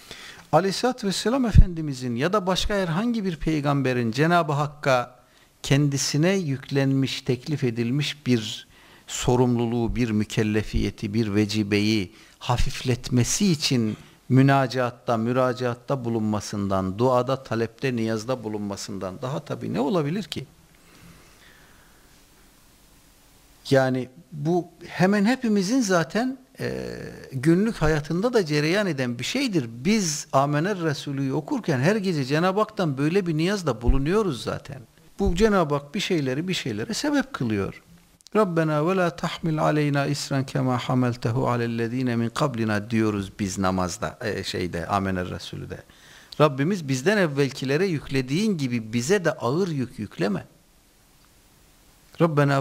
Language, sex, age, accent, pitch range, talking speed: Turkish, male, 60-79, native, 120-170 Hz, 110 wpm